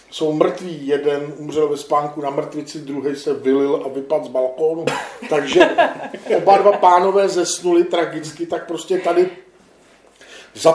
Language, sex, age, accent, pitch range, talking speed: Czech, male, 40-59, native, 145-175 Hz, 140 wpm